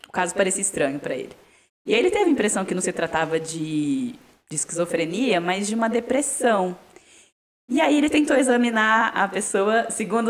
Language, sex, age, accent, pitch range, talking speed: Portuguese, female, 10-29, Brazilian, 160-225 Hz, 180 wpm